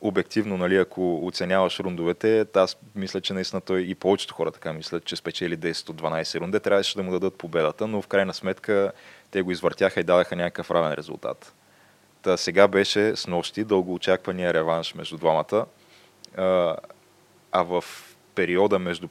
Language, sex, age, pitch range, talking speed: Bulgarian, male, 20-39, 85-100 Hz, 155 wpm